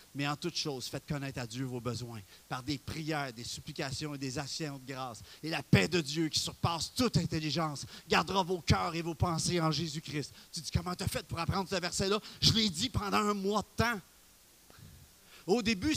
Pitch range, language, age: 145-230 Hz, French, 40-59